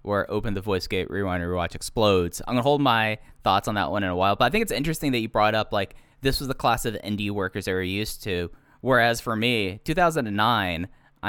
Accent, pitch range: American, 90-115 Hz